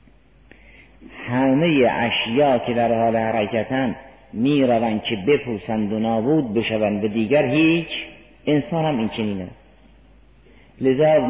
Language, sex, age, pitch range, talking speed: Persian, male, 50-69, 110-140 Hz, 105 wpm